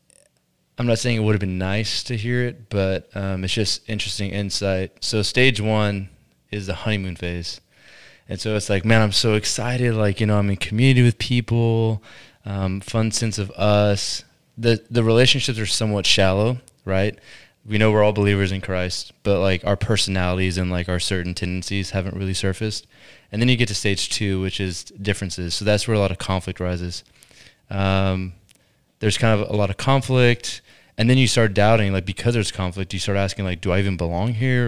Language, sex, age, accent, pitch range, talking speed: English, male, 20-39, American, 95-110 Hz, 200 wpm